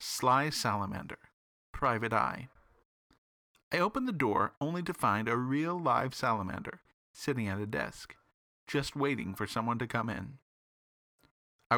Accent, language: American, English